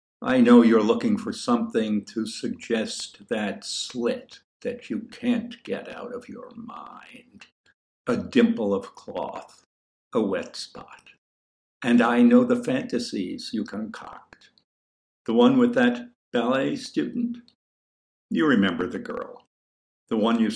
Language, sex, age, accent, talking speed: English, male, 60-79, American, 130 wpm